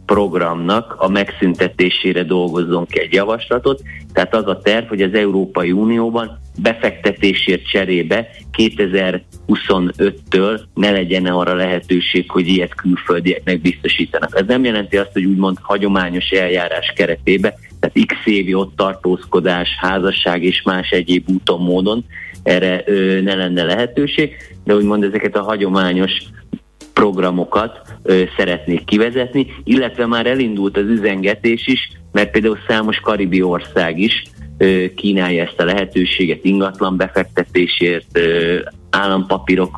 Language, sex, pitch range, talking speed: Hungarian, male, 90-105 Hz, 120 wpm